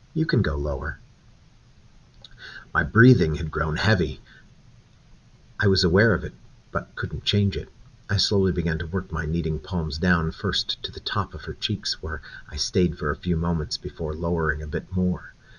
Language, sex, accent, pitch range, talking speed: English, male, American, 80-90 Hz, 175 wpm